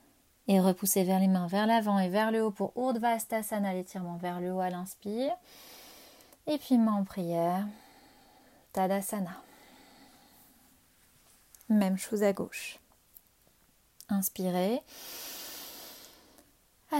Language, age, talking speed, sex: French, 30-49, 110 wpm, female